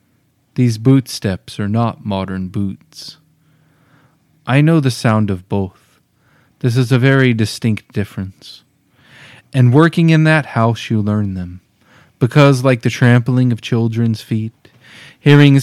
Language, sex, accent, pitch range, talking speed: English, male, American, 105-135 Hz, 130 wpm